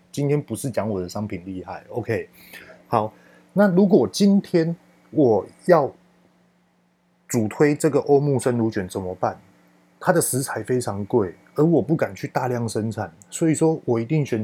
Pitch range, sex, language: 105-140 Hz, male, Chinese